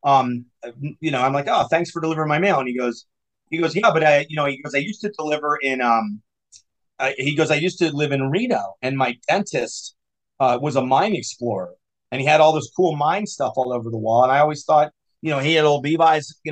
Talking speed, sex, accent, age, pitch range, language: 250 wpm, male, American, 30-49, 130-160 Hz, English